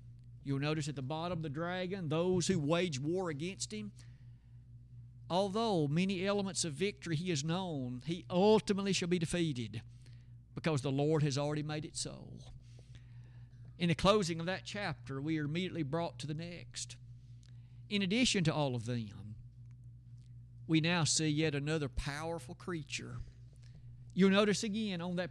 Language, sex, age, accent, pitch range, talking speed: English, male, 50-69, American, 120-180 Hz, 155 wpm